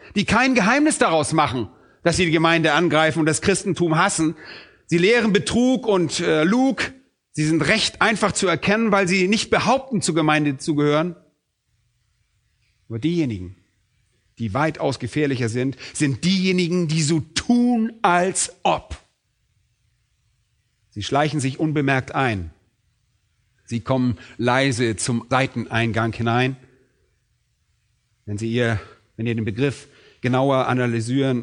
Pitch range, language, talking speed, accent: 115-165 Hz, German, 130 wpm, German